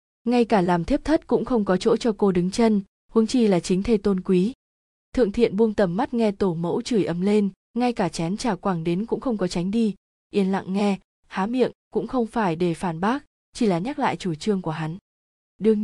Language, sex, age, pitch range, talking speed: Vietnamese, female, 20-39, 185-225 Hz, 235 wpm